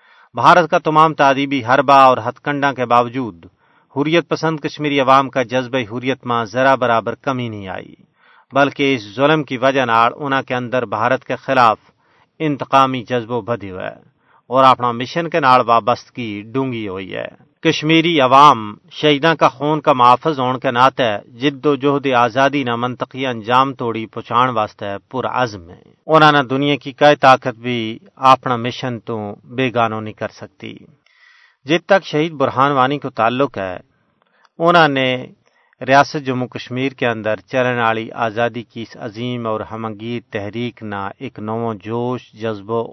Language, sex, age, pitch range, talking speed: Urdu, male, 40-59, 115-135 Hz, 160 wpm